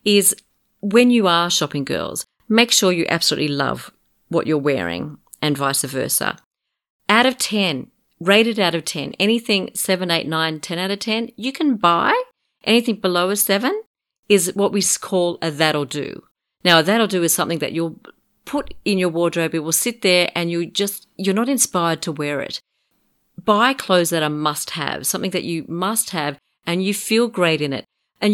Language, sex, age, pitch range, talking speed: English, female, 40-59, 160-210 Hz, 190 wpm